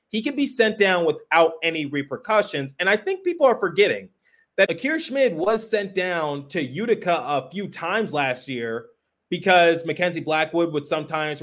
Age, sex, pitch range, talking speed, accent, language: 30-49, male, 145-170 Hz, 170 wpm, American, English